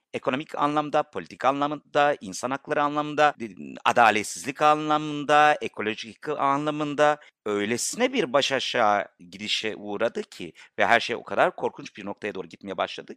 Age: 50-69